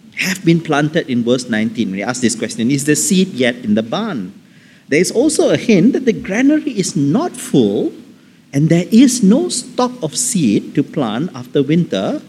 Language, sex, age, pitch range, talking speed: English, male, 50-69, 135-230 Hz, 190 wpm